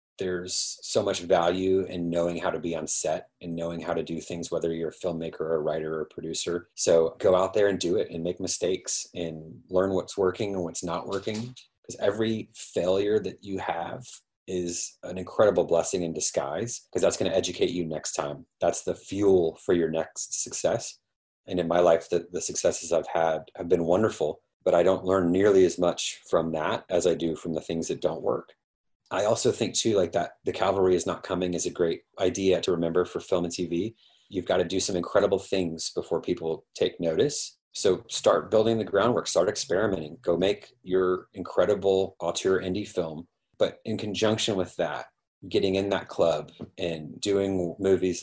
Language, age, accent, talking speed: English, 30-49, American, 200 wpm